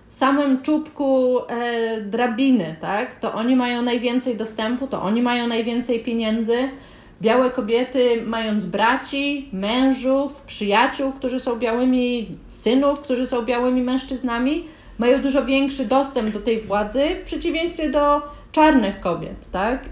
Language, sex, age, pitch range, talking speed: Polish, female, 30-49, 225-270 Hz, 125 wpm